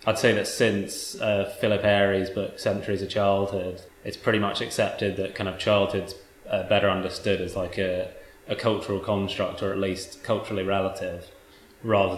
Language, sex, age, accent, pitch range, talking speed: English, male, 20-39, British, 95-100 Hz, 170 wpm